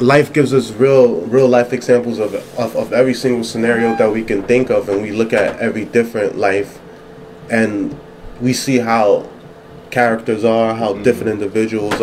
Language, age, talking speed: English, 20-39, 170 wpm